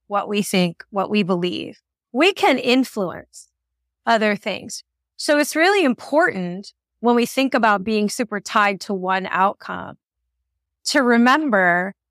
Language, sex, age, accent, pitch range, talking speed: English, female, 30-49, American, 180-240 Hz, 135 wpm